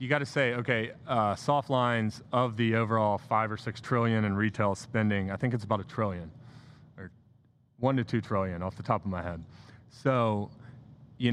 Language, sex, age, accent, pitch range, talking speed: English, male, 30-49, American, 105-130 Hz, 190 wpm